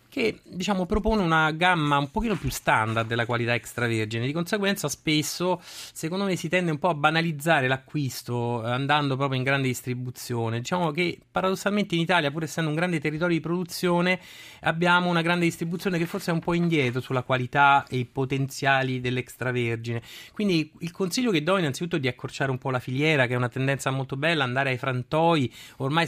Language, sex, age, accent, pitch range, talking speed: Italian, male, 30-49, native, 125-170 Hz, 185 wpm